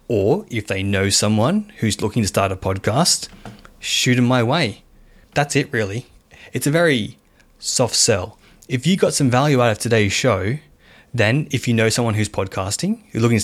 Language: English